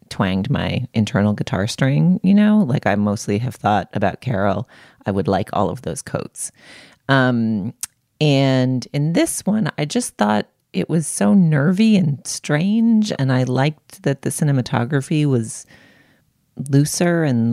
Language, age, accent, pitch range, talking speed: English, 30-49, American, 115-155 Hz, 150 wpm